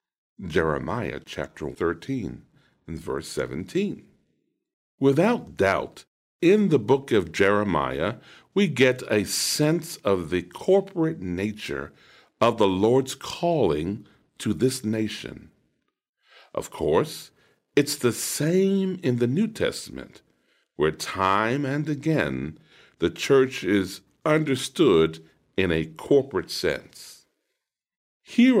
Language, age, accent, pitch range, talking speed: English, 60-79, American, 90-145 Hz, 105 wpm